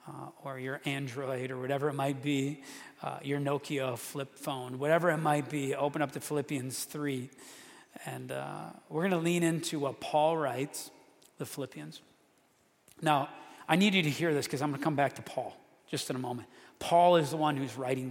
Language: English